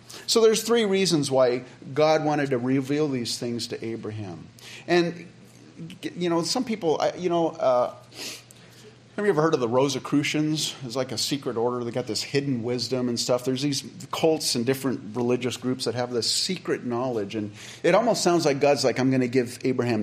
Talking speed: 190 wpm